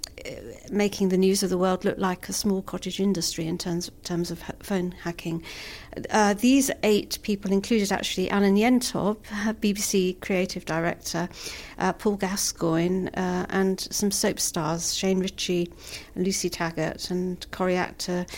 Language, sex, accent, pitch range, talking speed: English, female, British, 180-205 Hz, 145 wpm